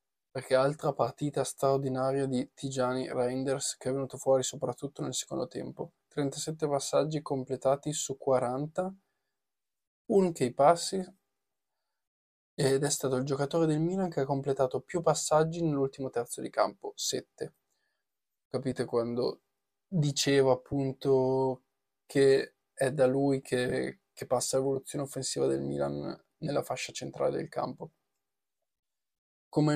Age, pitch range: 20-39, 130-150 Hz